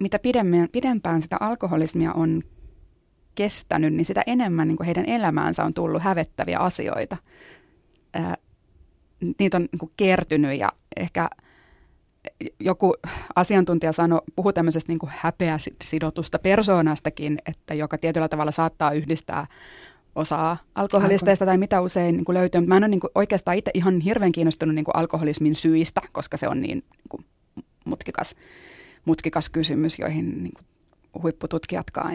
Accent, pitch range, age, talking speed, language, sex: native, 160-185 Hz, 20-39, 140 wpm, Finnish, female